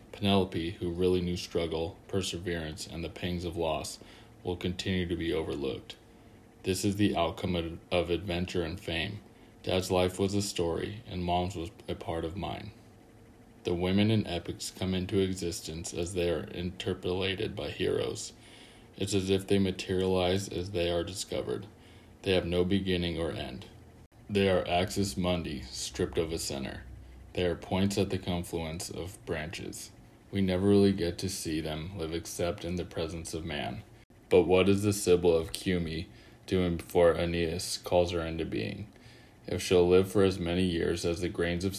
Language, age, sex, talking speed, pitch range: English, 20-39, male, 170 wpm, 85-100 Hz